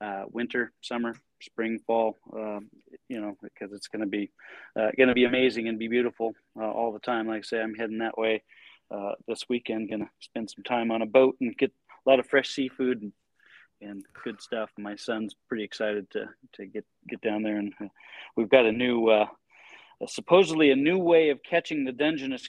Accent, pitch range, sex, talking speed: American, 115-145 Hz, male, 210 wpm